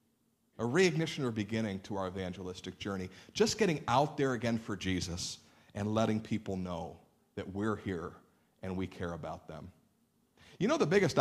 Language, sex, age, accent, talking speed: English, male, 50-69, American, 165 wpm